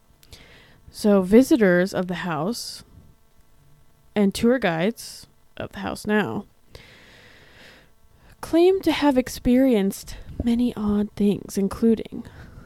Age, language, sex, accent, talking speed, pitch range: 20-39, English, female, American, 95 wpm, 185-225 Hz